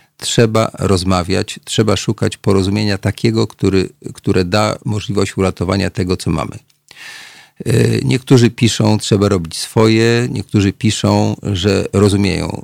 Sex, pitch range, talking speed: male, 95-110 Hz, 110 wpm